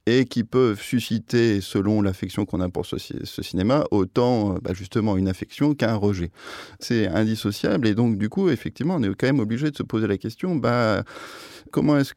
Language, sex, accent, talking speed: French, male, French, 190 wpm